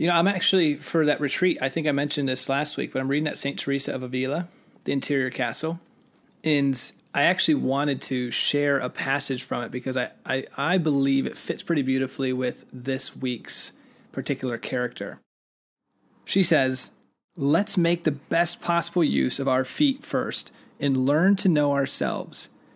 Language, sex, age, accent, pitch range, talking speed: English, male, 30-49, American, 130-165 Hz, 175 wpm